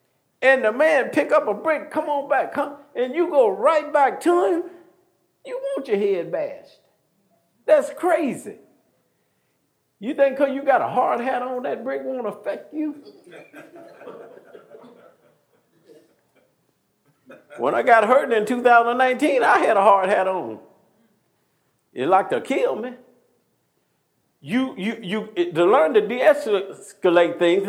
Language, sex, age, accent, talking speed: English, male, 50-69, American, 145 wpm